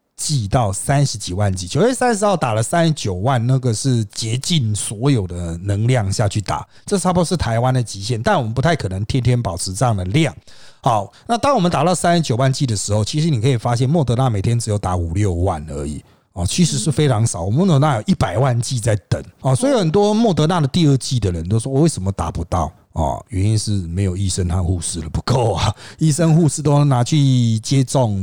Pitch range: 105-140 Hz